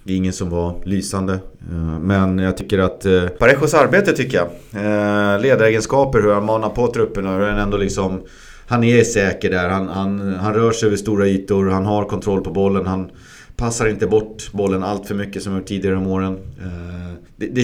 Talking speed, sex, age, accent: 185 wpm, male, 30-49, native